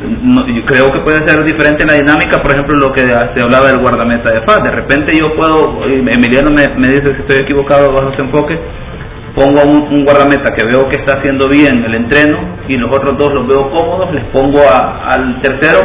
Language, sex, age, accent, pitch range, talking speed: Spanish, male, 40-59, Venezuelan, 120-145 Hz, 210 wpm